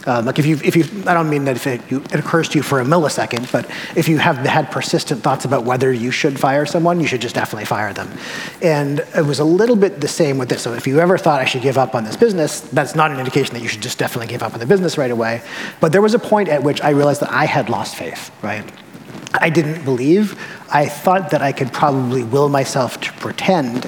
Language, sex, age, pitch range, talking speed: English, male, 30-49, 125-155 Hz, 260 wpm